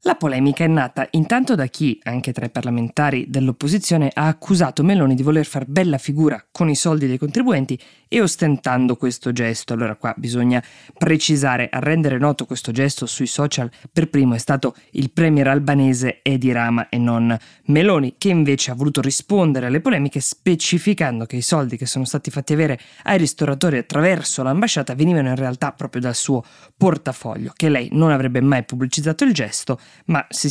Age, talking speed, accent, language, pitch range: 20-39, 175 wpm, native, Italian, 130-160 Hz